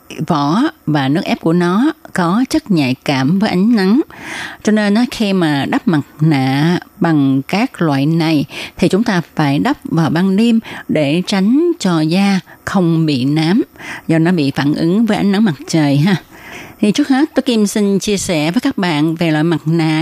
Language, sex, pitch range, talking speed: Vietnamese, female, 155-205 Hz, 200 wpm